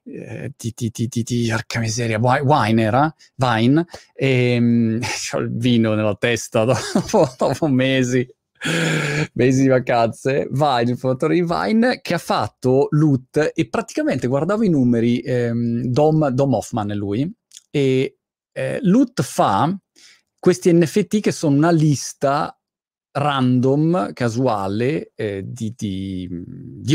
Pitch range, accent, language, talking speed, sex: 120-165 Hz, native, Italian, 135 wpm, male